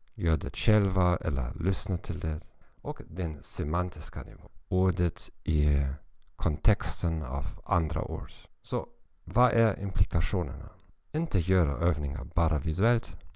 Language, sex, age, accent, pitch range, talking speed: Swedish, male, 50-69, German, 80-95 Hz, 115 wpm